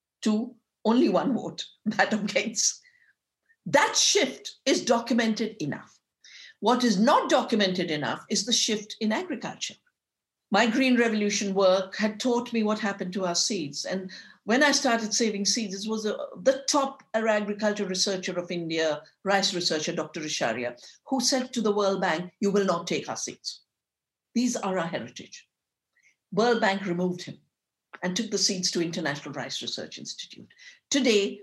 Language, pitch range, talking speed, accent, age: French, 195-250 Hz, 155 wpm, Indian, 60-79